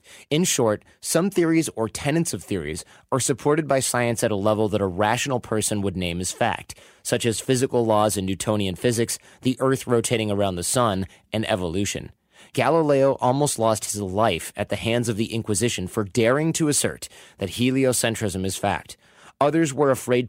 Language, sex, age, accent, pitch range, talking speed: English, male, 30-49, American, 105-135 Hz, 180 wpm